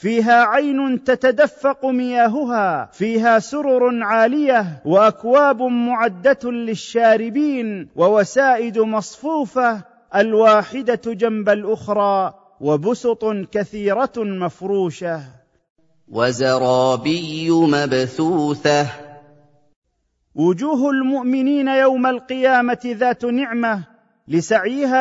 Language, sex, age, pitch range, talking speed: Arabic, male, 40-59, 195-255 Hz, 65 wpm